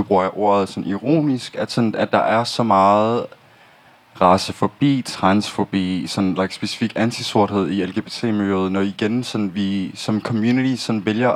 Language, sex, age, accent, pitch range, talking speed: Danish, male, 20-39, native, 105-130 Hz, 150 wpm